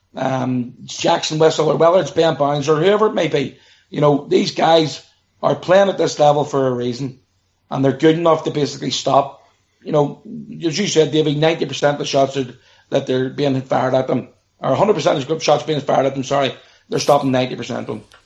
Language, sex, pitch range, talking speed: English, male, 135-160 Hz, 215 wpm